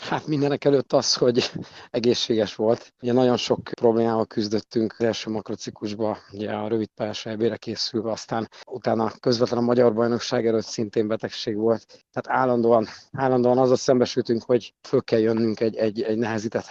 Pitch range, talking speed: 115-130 Hz, 150 wpm